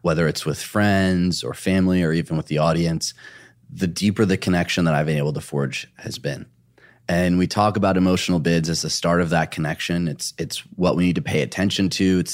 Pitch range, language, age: 85-100 Hz, English, 30-49